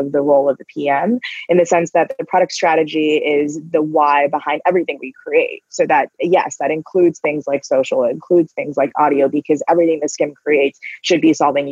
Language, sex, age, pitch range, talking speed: English, female, 20-39, 150-195 Hz, 210 wpm